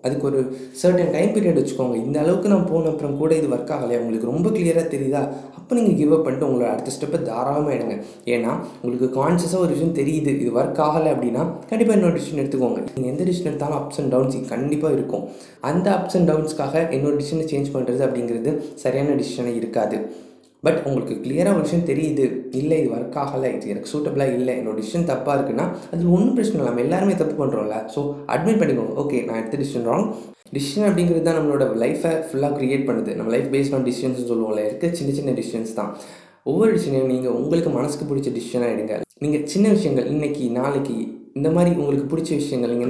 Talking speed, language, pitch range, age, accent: 185 wpm, Tamil, 125-160 Hz, 20-39, native